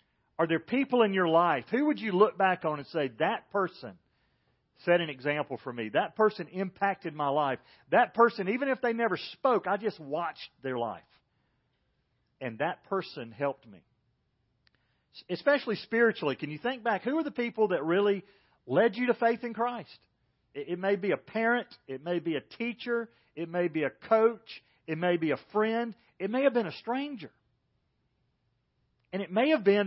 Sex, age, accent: male, 40-59, American